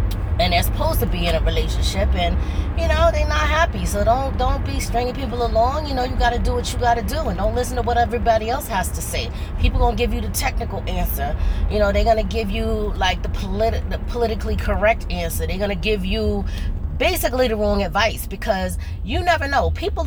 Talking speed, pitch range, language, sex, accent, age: 220 wpm, 80-110 Hz, English, female, American, 20-39